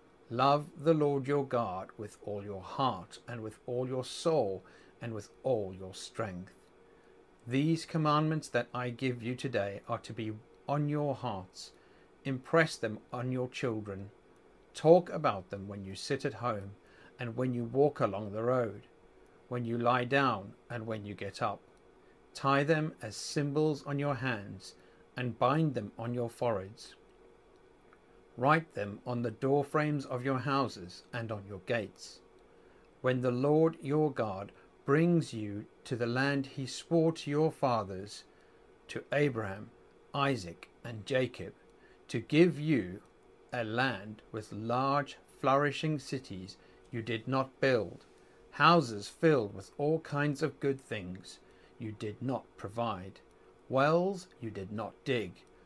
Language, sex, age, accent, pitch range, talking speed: English, male, 50-69, British, 105-140 Hz, 150 wpm